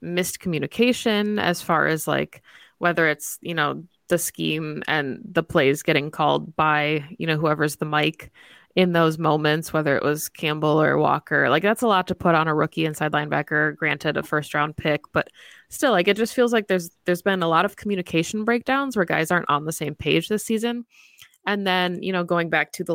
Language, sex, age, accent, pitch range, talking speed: English, female, 20-39, American, 155-180 Hz, 210 wpm